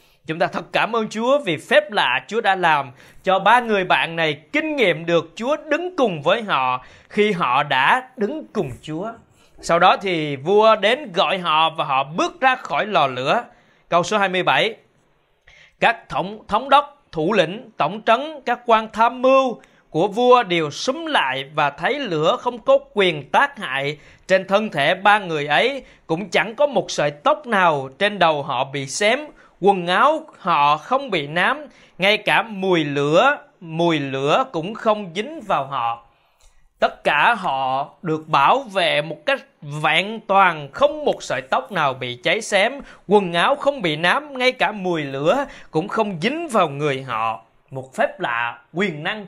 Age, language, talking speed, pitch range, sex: 20-39, Vietnamese, 180 wpm, 150-245 Hz, male